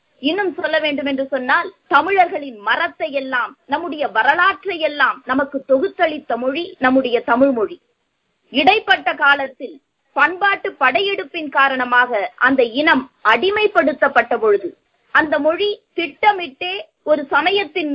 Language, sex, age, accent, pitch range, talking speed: Tamil, female, 20-39, native, 265-345 Hz, 95 wpm